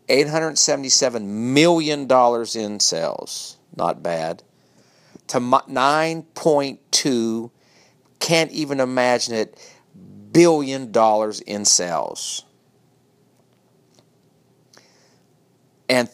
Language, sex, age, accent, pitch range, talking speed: English, male, 50-69, American, 110-155 Hz, 60 wpm